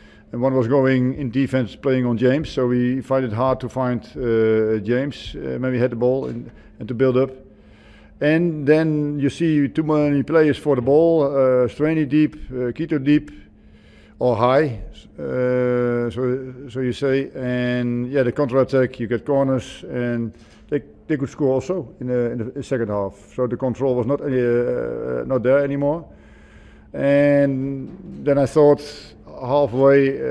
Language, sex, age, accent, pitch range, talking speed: English, male, 50-69, Dutch, 115-140 Hz, 170 wpm